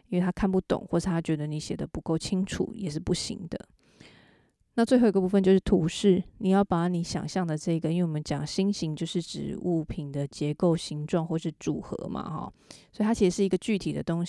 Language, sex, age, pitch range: Chinese, female, 20-39, 160-190 Hz